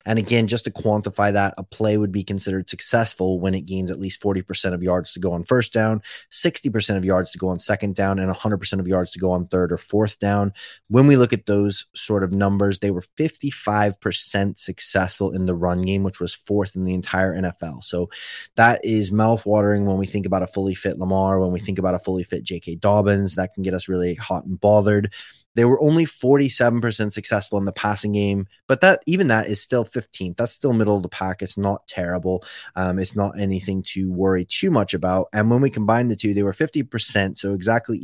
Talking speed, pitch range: 225 wpm, 95-110 Hz